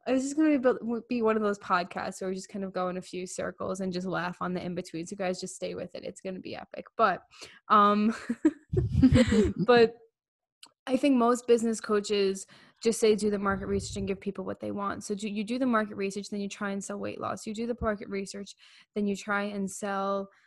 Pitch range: 195-225 Hz